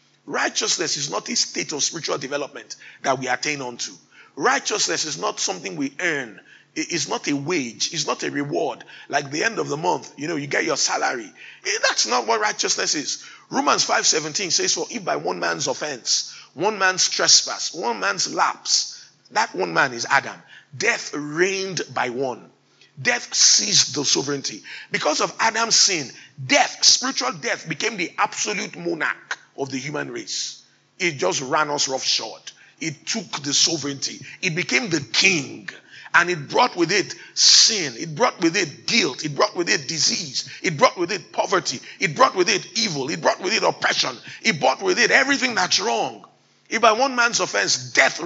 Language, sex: English, male